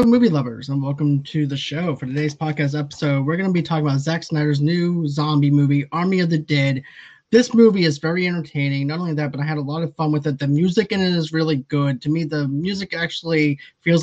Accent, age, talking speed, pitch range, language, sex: American, 20-39, 240 wpm, 145-165 Hz, English, male